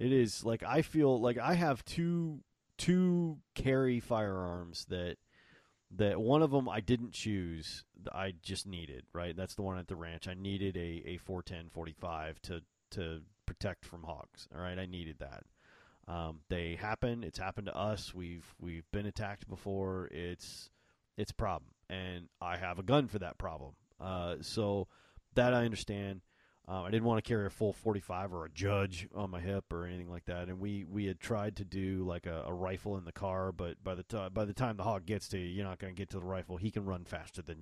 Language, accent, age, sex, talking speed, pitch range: English, American, 30-49, male, 215 wpm, 85-110 Hz